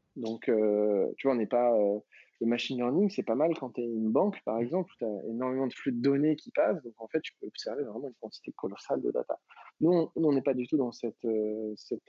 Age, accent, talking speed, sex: 20-39, French, 265 wpm, male